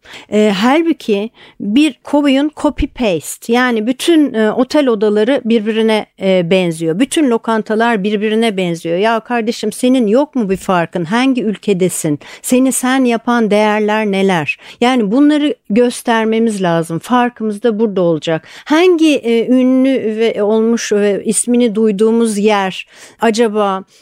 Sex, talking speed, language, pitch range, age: female, 125 wpm, Turkish, 200-245 Hz, 60-79